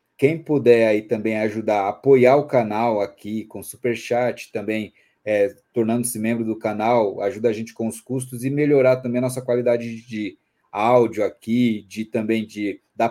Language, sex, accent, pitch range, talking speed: Portuguese, male, Brazilian, 115-135 Hz, 165 wpm